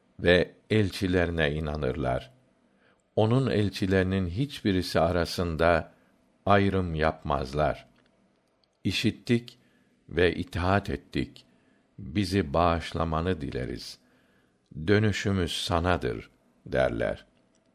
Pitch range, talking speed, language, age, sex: 85-105 Hz, 65 wpm, Turkish, 60-79, male